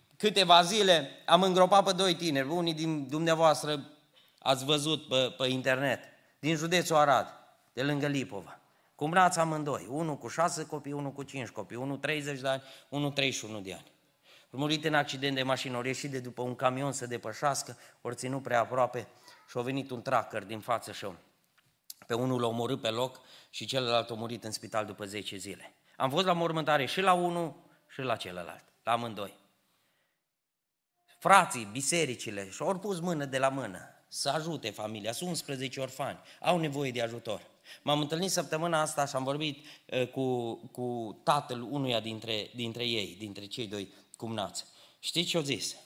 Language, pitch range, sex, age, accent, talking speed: Romanian, 115-150 Hz, male, 30-49, native, 175 wpm